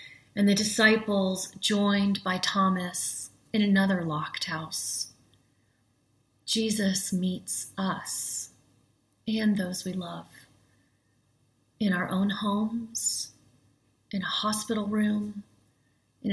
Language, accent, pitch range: English, American, 130-200 Hz